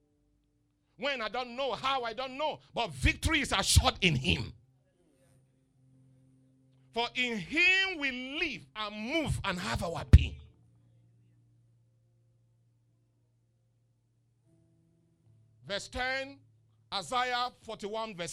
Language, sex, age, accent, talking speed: English, male, 50-69, Nigerian, 100 wpm